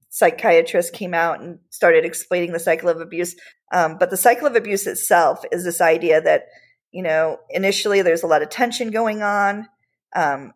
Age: 40-59